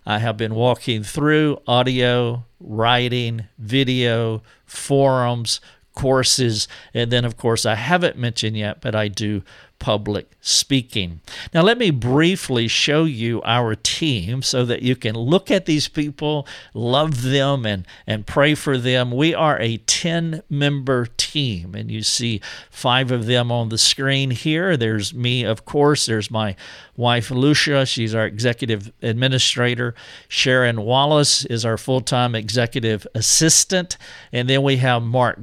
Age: 50-69